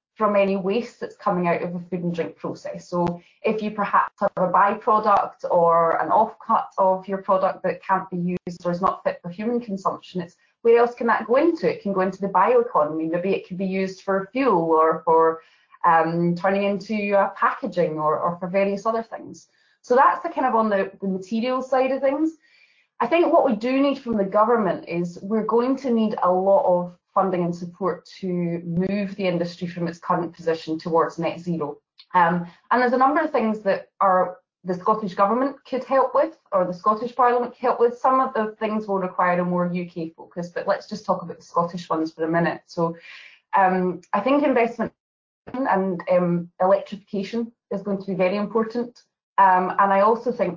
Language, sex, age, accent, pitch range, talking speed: English, female, 20-39, British, 175-225 Hz, 205 wpm